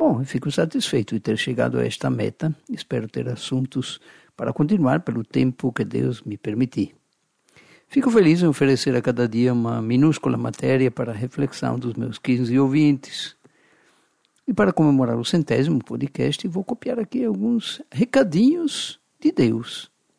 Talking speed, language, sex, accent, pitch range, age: 150 wpm, Portuguese, male, Brazilian, 125-195 Hz, 60-79